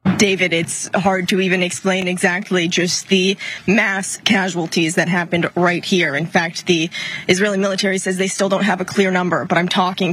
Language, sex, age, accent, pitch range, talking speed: English, female, 20-39, American, 180-205 Hz, 185 wpm